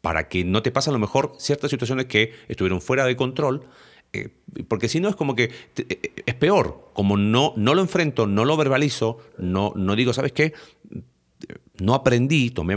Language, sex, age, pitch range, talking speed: Spanish, male, 40-59, 100-135 Hz, 190 wpm